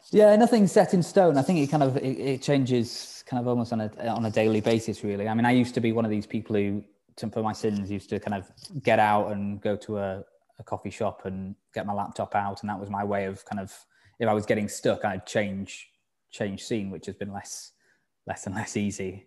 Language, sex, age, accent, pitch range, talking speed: English, male, 20-39, British, 95-115 Hz, 250 wpm